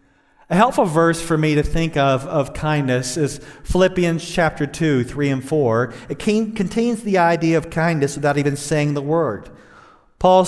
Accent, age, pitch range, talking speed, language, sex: American, 40-59, 130-175 Hz, 170 wpm, English, male